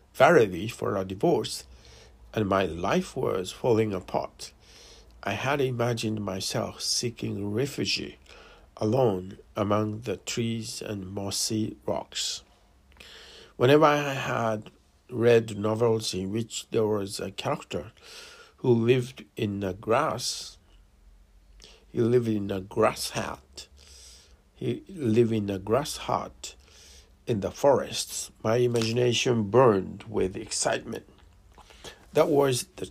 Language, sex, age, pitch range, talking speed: English, male, 60-79, 90-120 Hz, 115 wpm